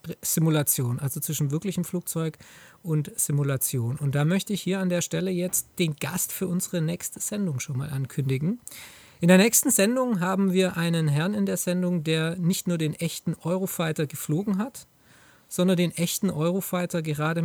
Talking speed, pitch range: 170 wpm, 150-185 Hz